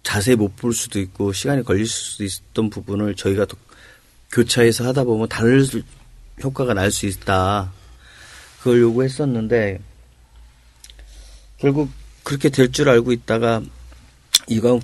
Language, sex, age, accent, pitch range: Korean, male, 40-59, native, 105-130 Hz